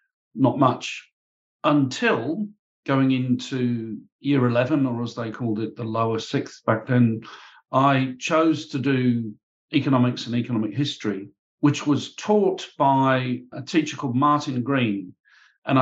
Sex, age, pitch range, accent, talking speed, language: male, 50-69, 120-150 Hz, British, 135 wpm, English